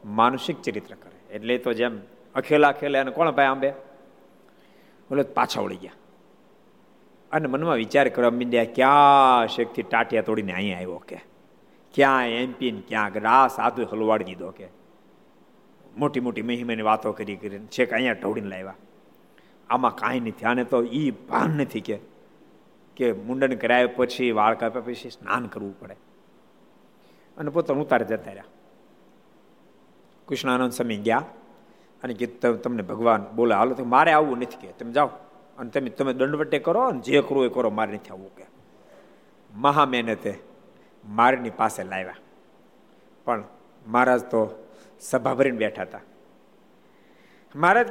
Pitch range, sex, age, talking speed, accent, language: 110-145 Hz, male, 50-69, 105 wpm, native, Gujarati